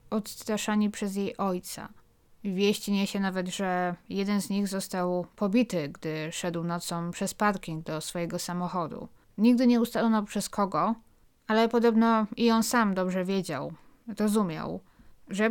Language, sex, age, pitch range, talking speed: Polish, female, 20-39, 180-220 Hz, 135 wpm